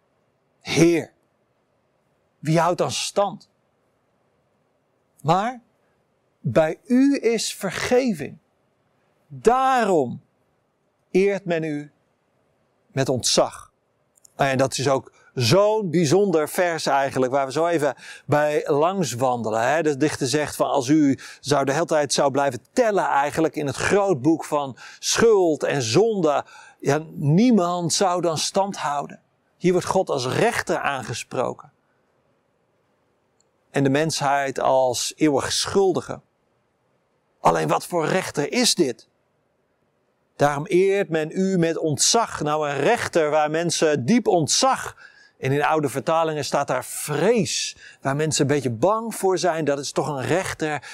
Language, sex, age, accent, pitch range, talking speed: Dutch, male, 50-69, Dutch, 140-190 Hz, 125 wpm